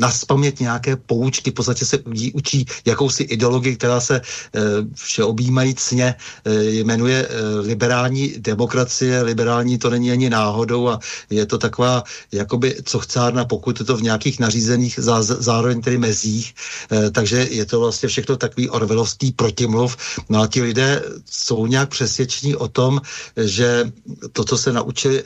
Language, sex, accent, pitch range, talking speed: Czech, male, native, 110-125 Hz, 145 wpm